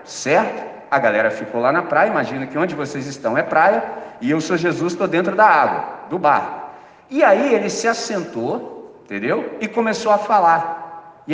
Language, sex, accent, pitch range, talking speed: Portuguese, male, Brazilian, 165-225 Hz, 185 wpm